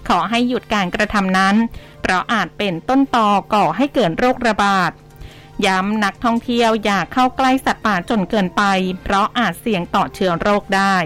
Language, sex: Thai, female